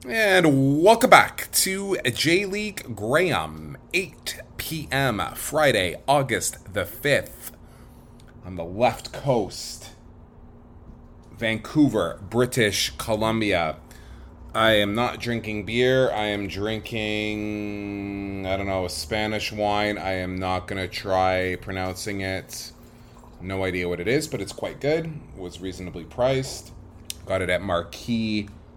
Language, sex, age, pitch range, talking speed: English, male, 30-49, 95-120 Hz, 120 wpm